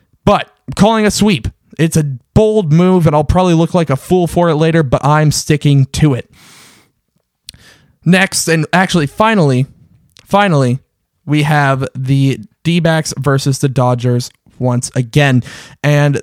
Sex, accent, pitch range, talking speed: male, American, 145-190 Hz, 145 wpm